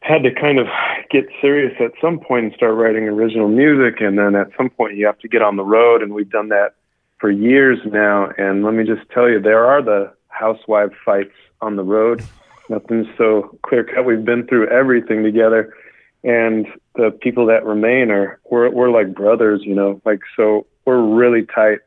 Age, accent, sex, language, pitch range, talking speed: 40-59, American, male, English, 100-120 Hz, 200 wpm